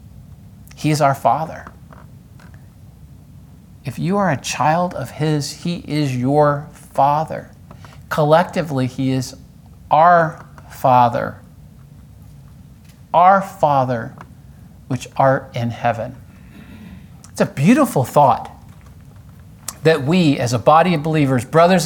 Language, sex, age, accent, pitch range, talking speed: English, male, 50-69, American, 125-155 Hz, 105 wpm